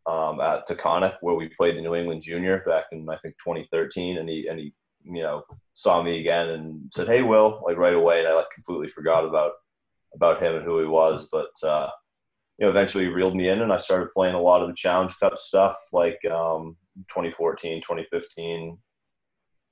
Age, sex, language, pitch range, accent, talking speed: 20-39, male, English, 80-95 Hz, American, 200 wpm